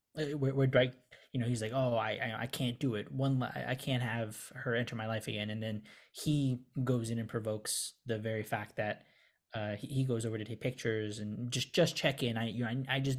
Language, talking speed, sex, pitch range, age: English, 225 wpm, male, 115-135 Hz, 20-39